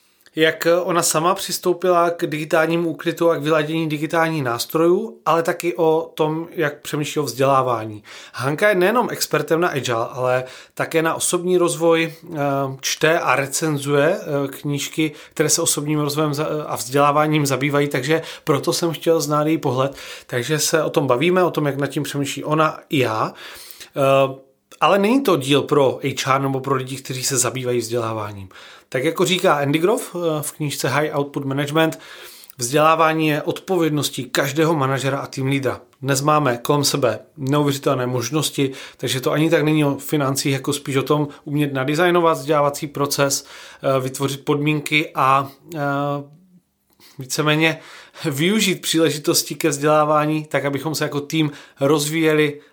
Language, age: Czech, 30-49